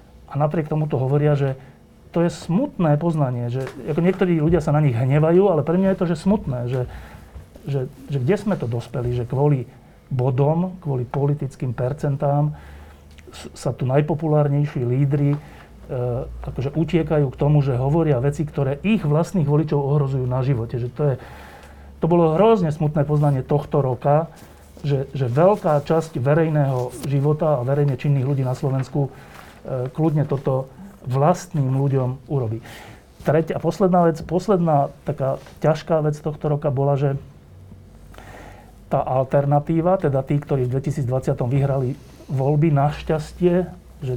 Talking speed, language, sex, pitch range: 140 wpm, Slovak, male, 130-155 Hz